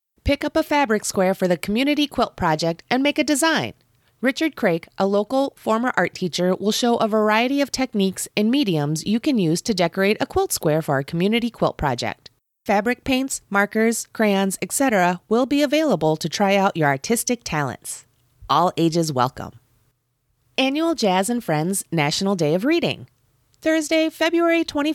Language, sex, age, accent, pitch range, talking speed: English, female, 30-49, American, 160-250 Hz, 165 wpm